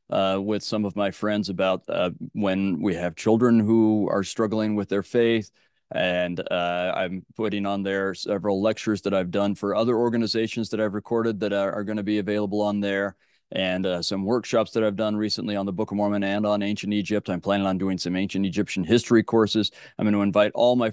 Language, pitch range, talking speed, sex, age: English, 95-110 Hz, 215 wpm, male, 30-49